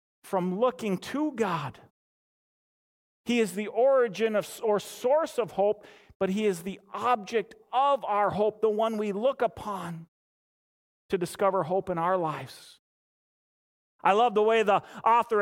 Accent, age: American, 40-59